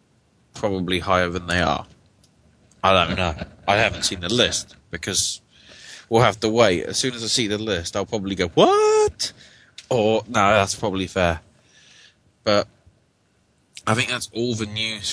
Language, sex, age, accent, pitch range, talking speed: English, male, 20-39, British, 100-115 Hz, 165 wpm